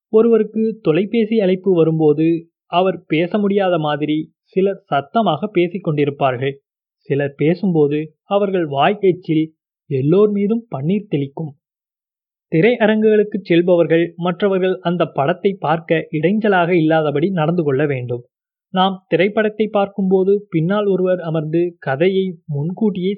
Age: 30-49